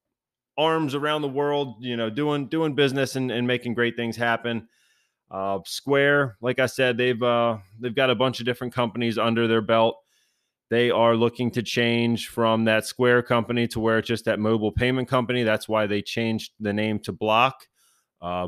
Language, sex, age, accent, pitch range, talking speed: English, male, 30-49, American, 105-120 Hz, 190 wpm